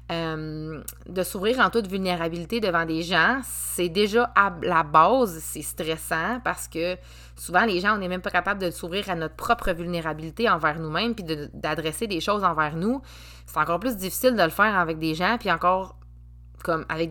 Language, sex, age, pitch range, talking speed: French, female, 20-39, 150-195 Hz, 195 wpm